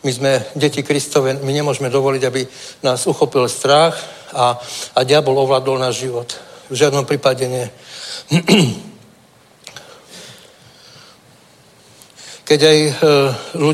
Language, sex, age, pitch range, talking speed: Czech, male, 60-79, 130-145 Hz, 95 wpm